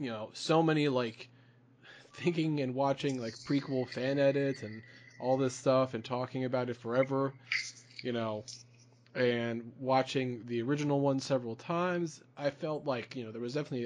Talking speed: 165 wpm